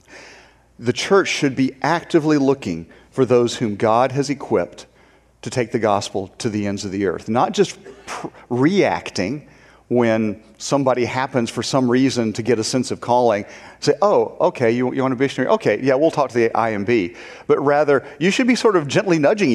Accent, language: American, English